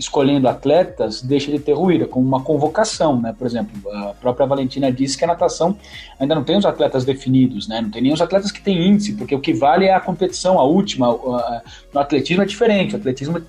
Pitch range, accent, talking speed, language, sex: 135-175 Hz, Brazilian, 220 wpm, Portuguese, male